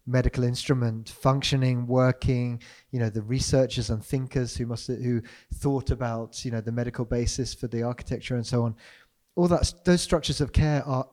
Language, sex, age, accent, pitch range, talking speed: English, male, 30-49, British, 120-140 Hz, 185 wpm